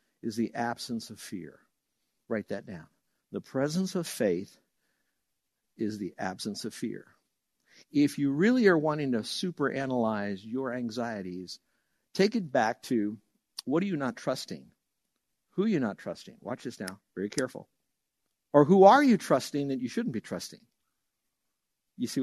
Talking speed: 155 wpm